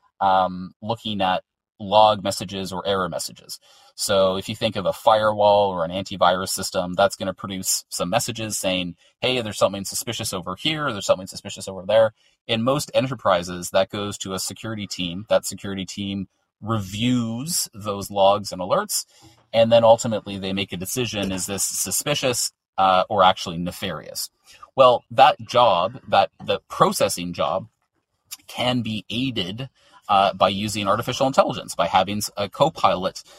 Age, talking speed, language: 30-49, 155 wpm, English